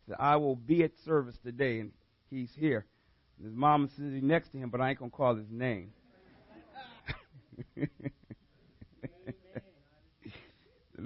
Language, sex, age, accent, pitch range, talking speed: English, male, 50-69, American, 120-190 Hz, 135 wpm